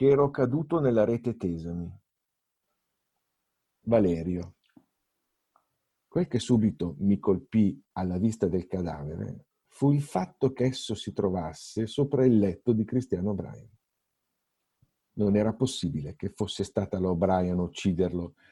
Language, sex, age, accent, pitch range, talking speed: Italian, male, 50-69, native, 95-120 Hz, 120 wpm